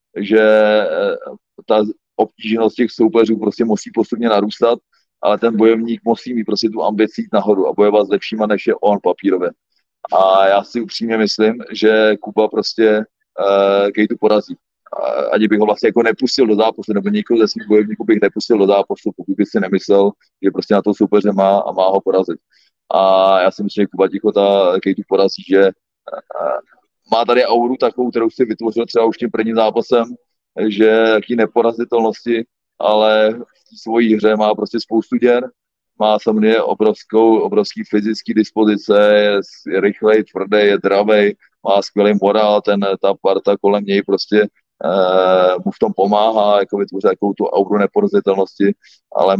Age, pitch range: 30-49, 100-115 Hz